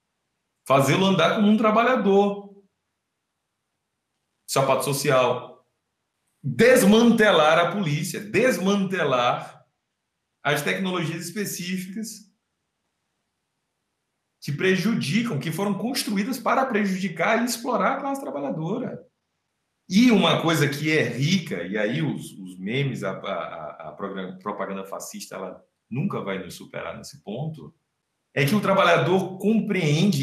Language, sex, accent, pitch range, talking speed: Portuguese, male, Brazilian, 150-205 Hz, 105 wpm